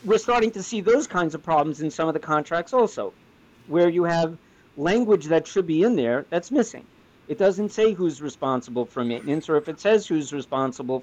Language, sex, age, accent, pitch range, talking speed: English, male, 50-69, American, 135-165 Hz, 205 wpm